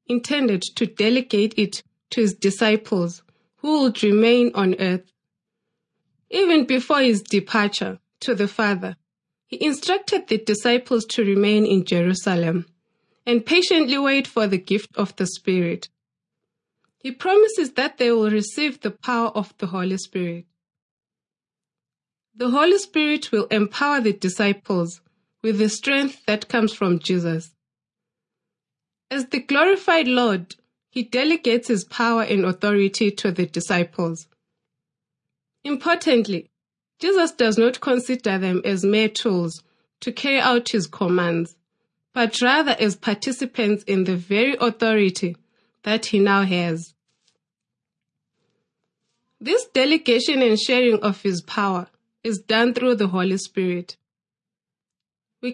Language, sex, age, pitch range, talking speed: English, female, 20-39, 185-250 Hz, 125 wpm